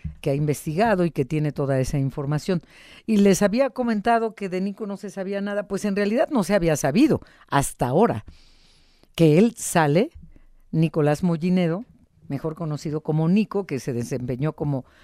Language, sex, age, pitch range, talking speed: Spanish, female, 50-69, 150-200 Hz, 170 wpm